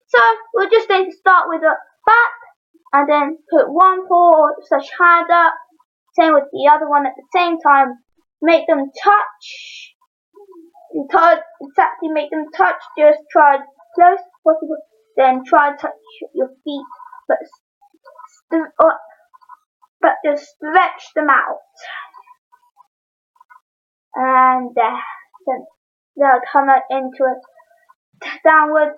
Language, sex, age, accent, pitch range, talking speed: English, female, 20-39, British, 290-380 Hz, 125 wpm